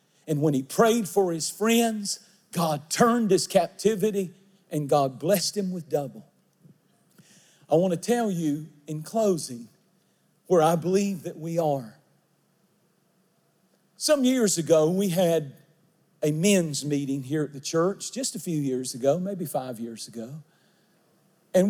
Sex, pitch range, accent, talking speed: male, 150-195 Hz, American, 145 wpm